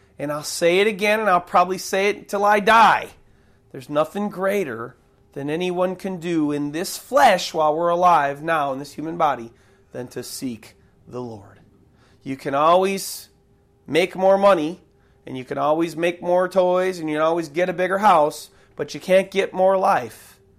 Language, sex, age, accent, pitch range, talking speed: English, male, 30-49, American, 135-185 Hz, 185 wpm